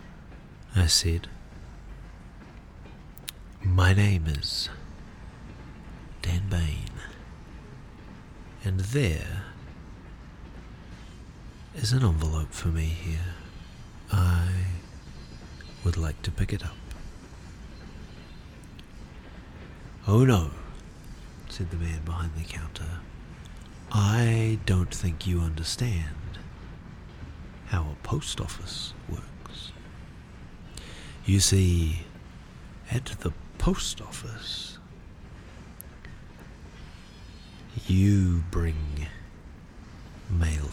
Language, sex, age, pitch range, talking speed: English, male, 50-69, 80-95 Hz, 70 wpm